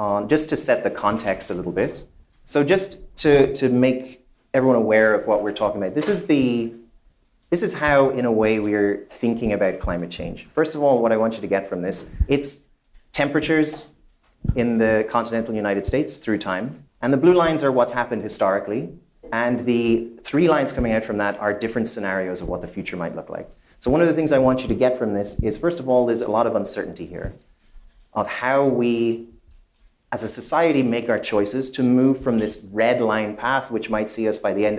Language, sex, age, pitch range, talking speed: English, male, 30-49, 105-130 Hz, 215 wpm